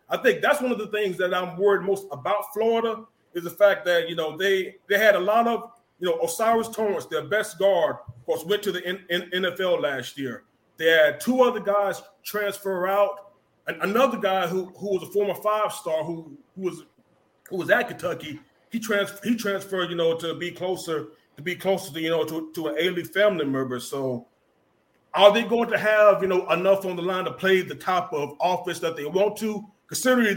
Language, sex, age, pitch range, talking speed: English, male, 30-49, 180-225 Hz, 215 wpm